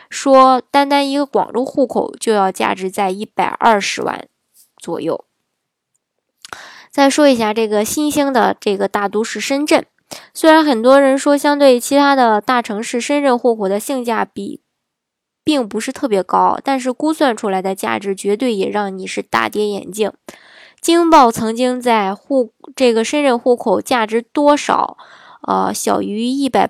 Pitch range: 205-275 Hz